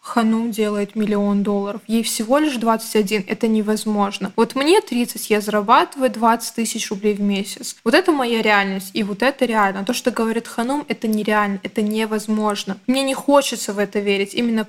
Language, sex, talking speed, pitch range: Russian, female, 175 wpm, 215-260 Hz